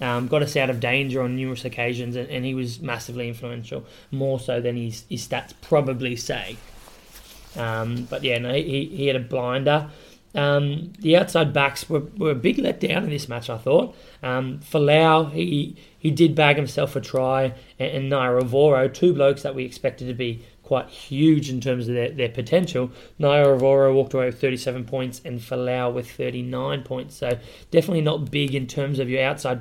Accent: Australian